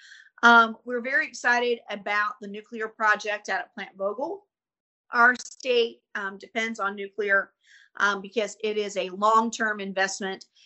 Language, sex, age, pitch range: English, female, 40-59, 195-240 Hz